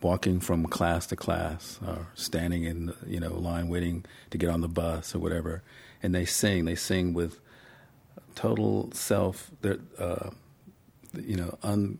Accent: American